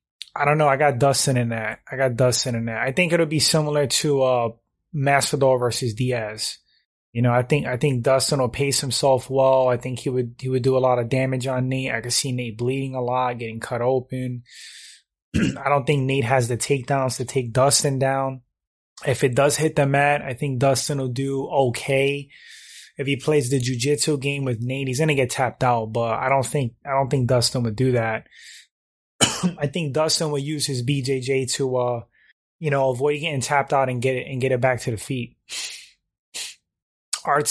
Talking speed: 210 wpm